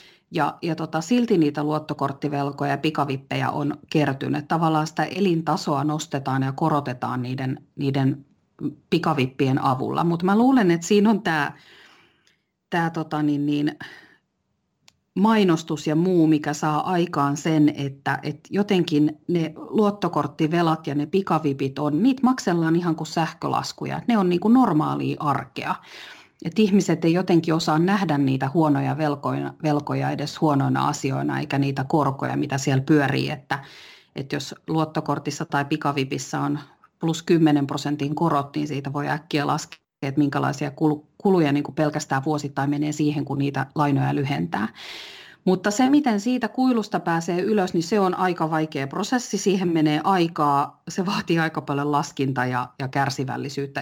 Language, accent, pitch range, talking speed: Finnish, native, 145-170 Hz, 145 wpm